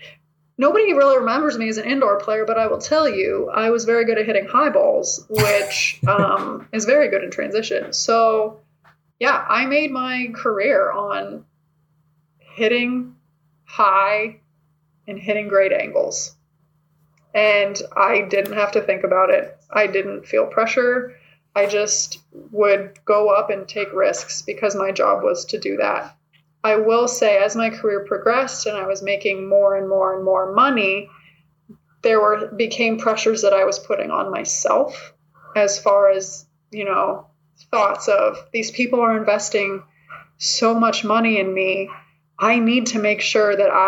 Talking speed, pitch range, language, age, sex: 160 wpm, 190-230 Hz, English, 20-39, female